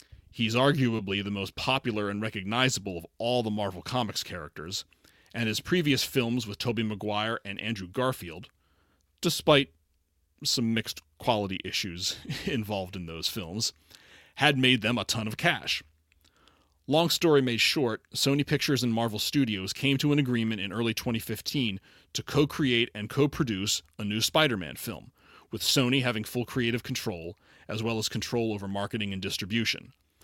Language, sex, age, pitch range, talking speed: English, male, 30-49, 95-130 Hz, 155 wpm